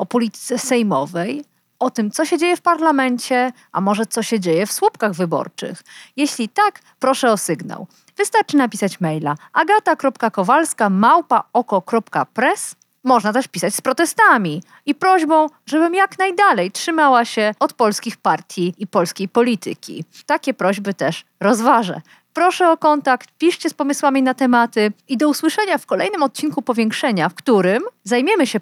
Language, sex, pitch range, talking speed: Polish, female, 205-315 Hz, 145 wpm